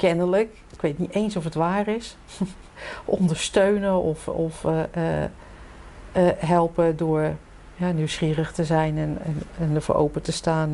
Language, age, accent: Dutch, 50-69, Dutch